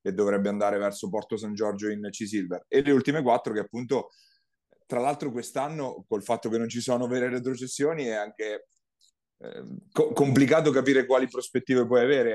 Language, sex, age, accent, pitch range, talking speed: Italian, male, 30-49, native, 105-130 Hz, 175 wpm